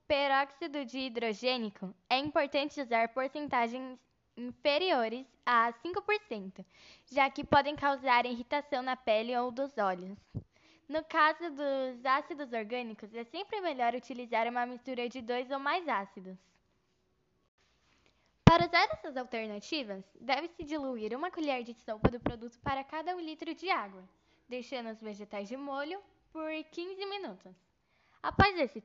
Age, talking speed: 10-29, 130 wpm